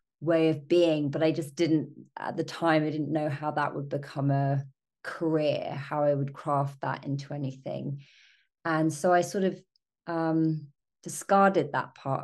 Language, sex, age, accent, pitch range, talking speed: English, female, 30-49, British, 145-165 Hz, 170 wpm